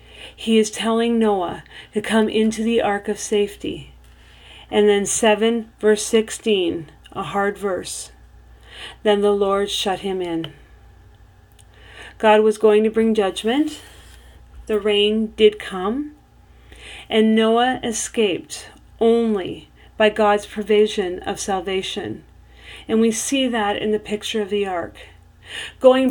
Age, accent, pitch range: 40-59, American, 195-225 Hz